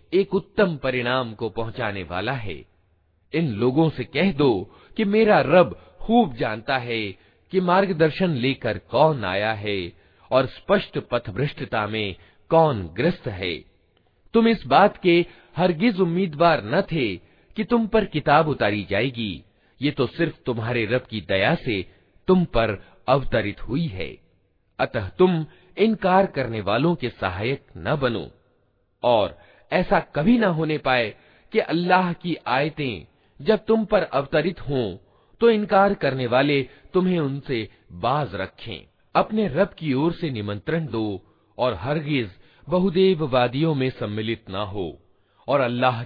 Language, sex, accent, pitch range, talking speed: Hindi, male, native, 105-170 Hz, 140 wpm